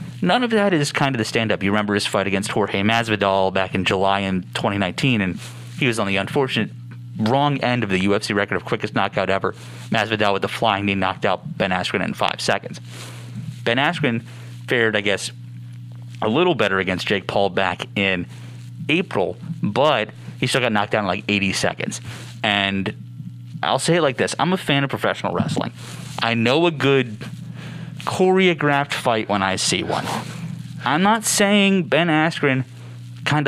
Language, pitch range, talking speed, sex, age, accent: English, 100-145 Hz, 180 wpm, male, 30-49, American